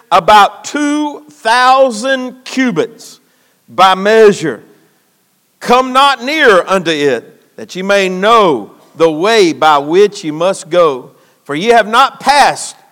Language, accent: English, American